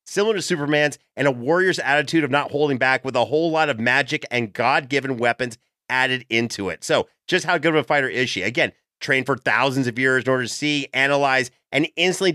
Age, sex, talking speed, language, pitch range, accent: 30-49, male, 225 wpm, English, 130-160 Hz, American